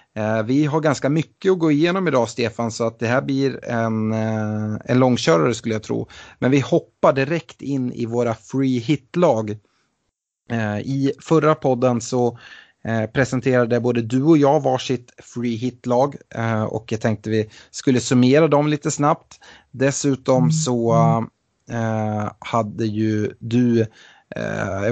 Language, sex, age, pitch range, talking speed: Swedish, male, 30-49, 110-135 Hz, 135 wpm